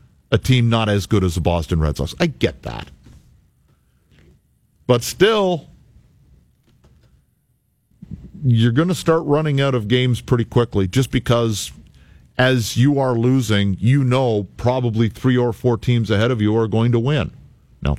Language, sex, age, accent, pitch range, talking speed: English, male, 50-69, American, 90-125 Hz, 155 wpm